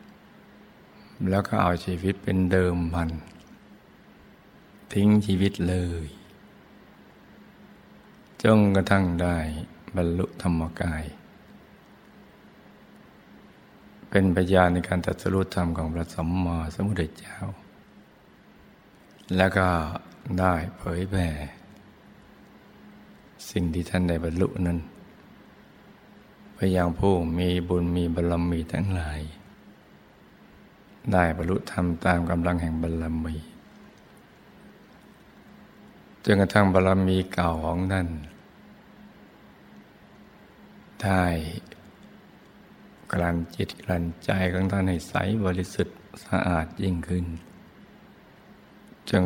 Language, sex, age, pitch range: Thai, male, 60-79, 85-95 Hz